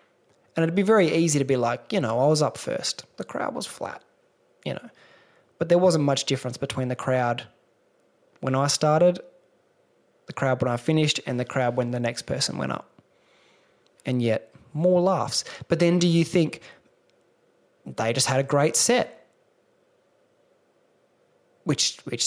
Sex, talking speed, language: male, 165 wpm, English